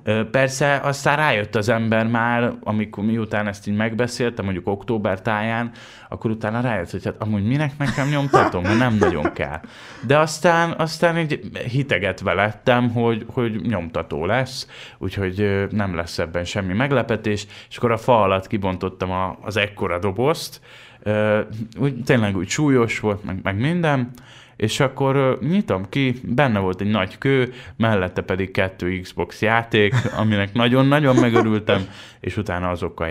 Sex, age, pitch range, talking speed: male, 20-39, 100-125 Hz, 145 wpm